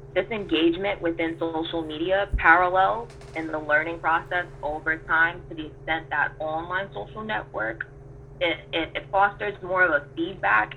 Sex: female